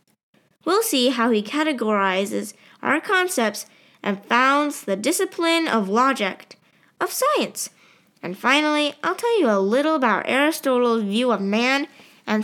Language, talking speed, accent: English, 135 wpm, American